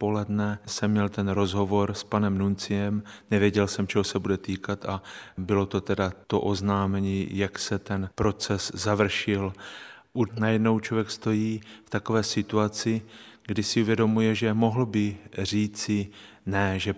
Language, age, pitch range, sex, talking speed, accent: Czech, 30-49, 105-115 Hz, male, 140 wpm, native